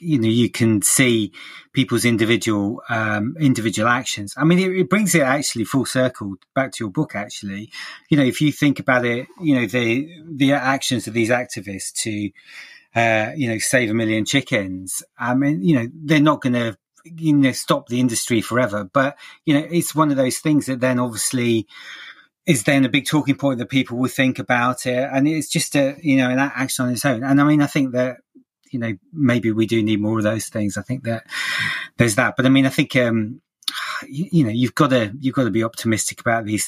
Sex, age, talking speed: male, 30-49, 220 wpm